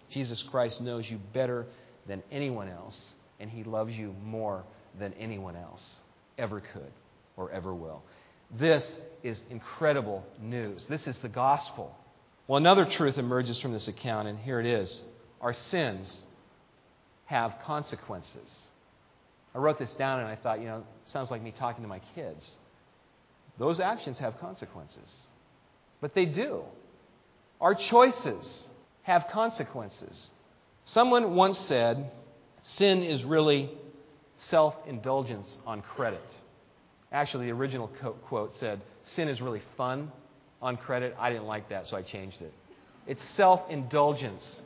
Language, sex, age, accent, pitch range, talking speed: English, male, 40-59, American, 110-155 Hz, 135 wpm